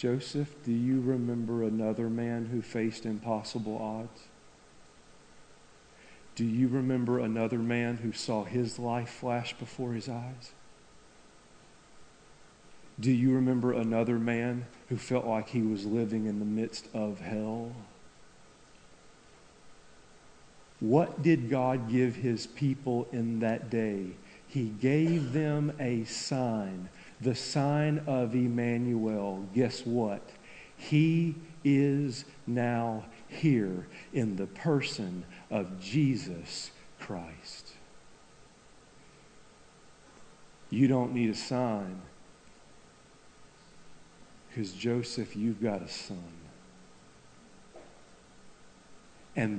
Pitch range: 110-130 Hz